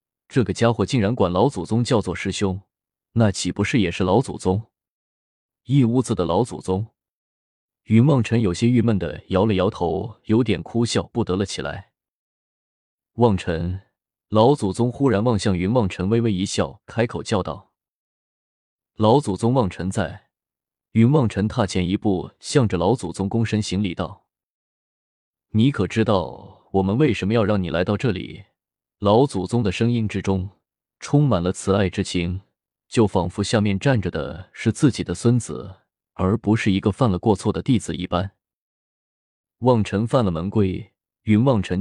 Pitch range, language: 95-115 Hz, Chinese